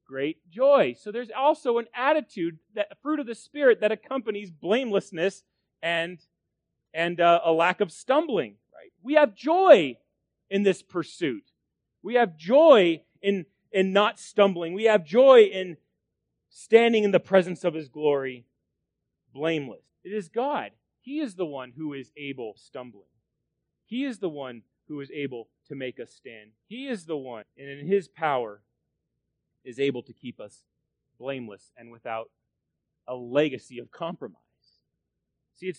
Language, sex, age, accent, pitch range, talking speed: English, male, 30-49, American, 150-220 Hz, 155 wpm